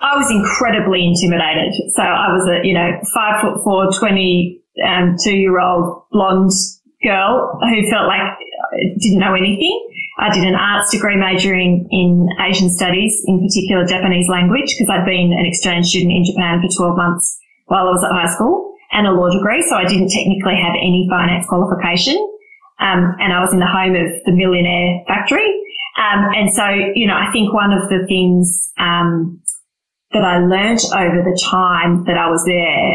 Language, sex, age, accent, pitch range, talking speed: English, female, 20-39, Australian, 175-200 Hz, 180 wpm